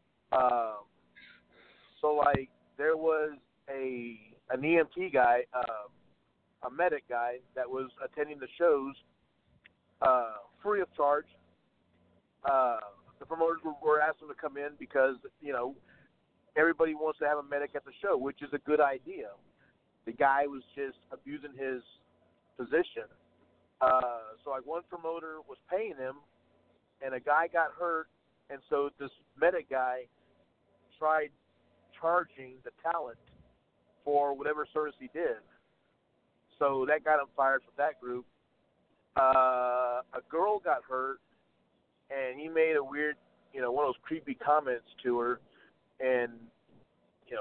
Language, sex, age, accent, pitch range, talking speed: English, male, 50-69, American, 130-160 Hz, 140 wpm